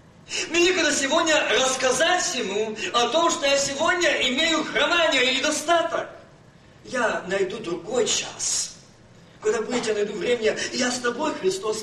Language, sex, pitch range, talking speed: Russian, male, 260-355 Hz, 130 wpm